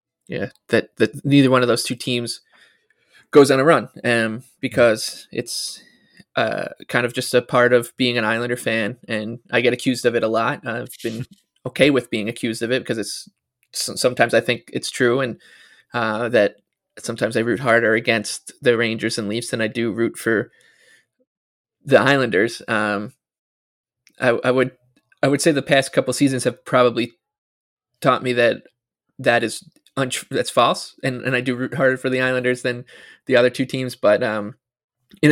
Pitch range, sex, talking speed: 115-130 Hz, male, 185 wpm